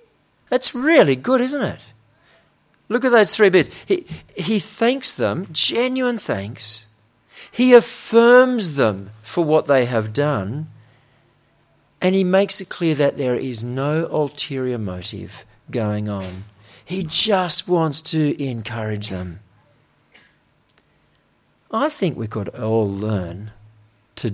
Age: 50-69